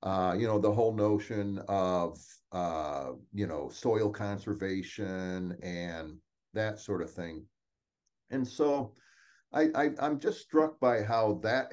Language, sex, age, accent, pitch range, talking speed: English, male, 50-69, American, 100-130 Hz, 140 wpm